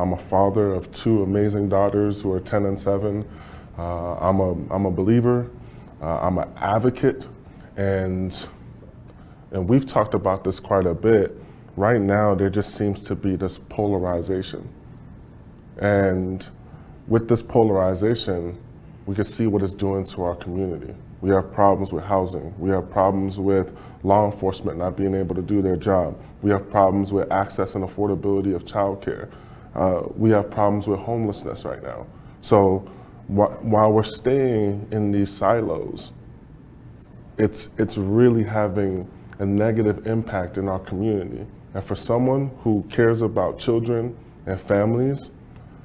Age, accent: 20-39, American